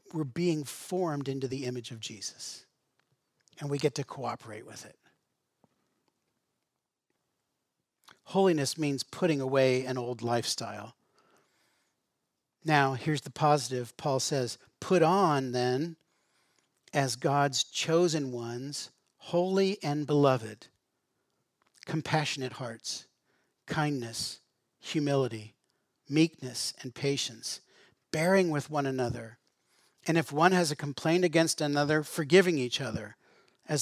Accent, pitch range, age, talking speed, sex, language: American, 125-155 Hz, 40-59, 110 wpm, male, English